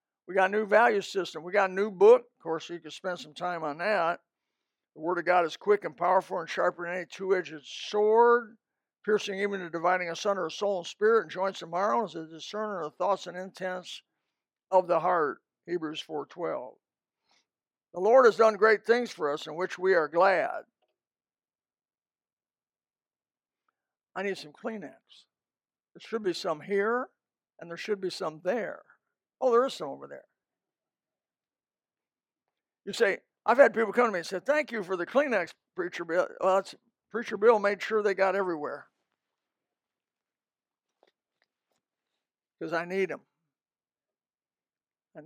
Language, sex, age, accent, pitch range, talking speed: English, male, 60-79, American, 175-215 Hz, 165 wpm